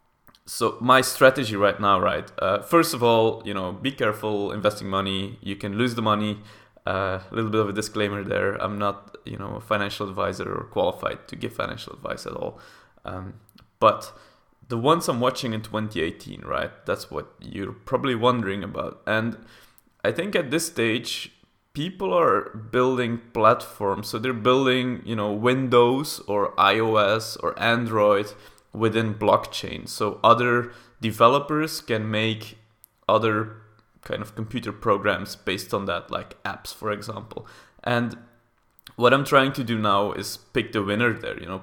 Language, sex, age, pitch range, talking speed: English, male, 20-39, 105-120 Hz, 160 wpm